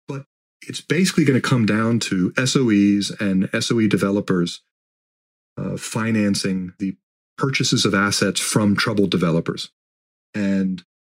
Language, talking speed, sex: English, 115 wpm, male